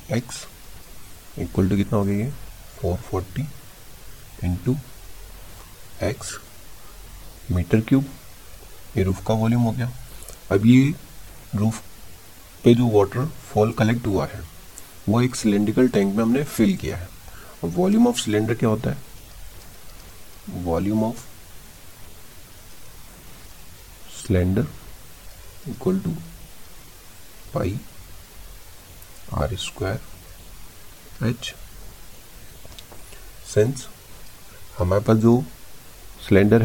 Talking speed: 95 wpm